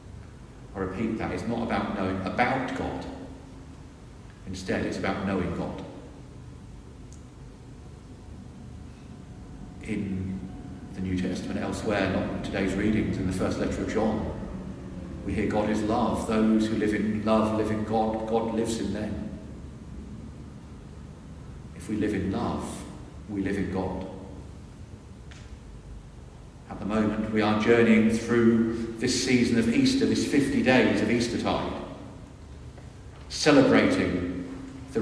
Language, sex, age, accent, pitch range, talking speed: English, male, 40-59, British, 90-105 Hz, 125 wpm